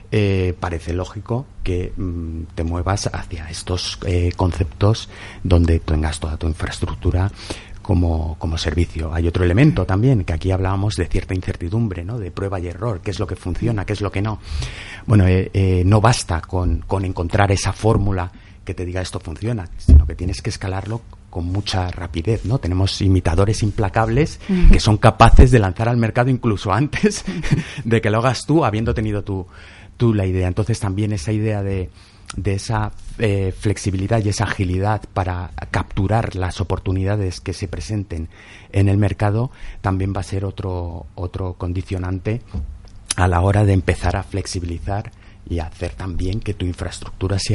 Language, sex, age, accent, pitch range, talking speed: Spanish, male, 30-49, Spanish, 90-105 Hz, 170 wpm